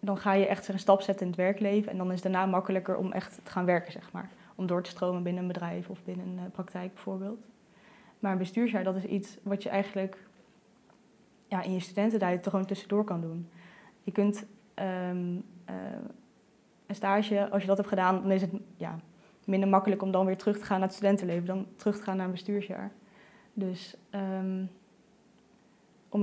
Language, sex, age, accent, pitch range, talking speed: Dutch, female, 20-39, Dutch, 190-210 Hz, 195 wpm